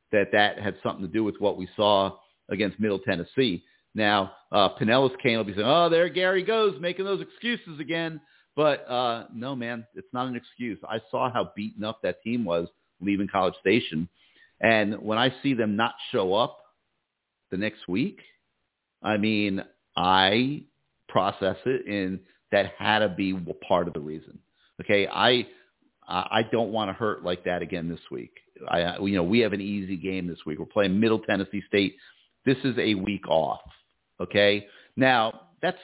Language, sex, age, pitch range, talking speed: English, male, 50-69, 100-140 Hz, 180 wpm